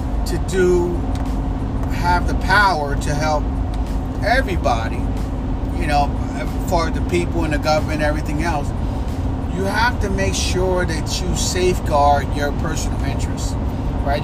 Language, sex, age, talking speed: English, male, 30-49, 130 wpm